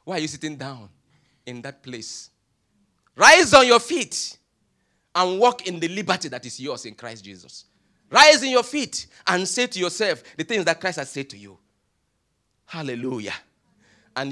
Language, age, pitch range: English, 40-59, 120-190 Hz